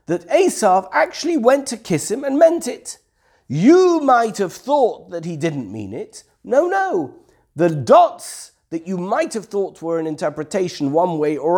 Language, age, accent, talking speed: English, 50-69, British, 175 wpm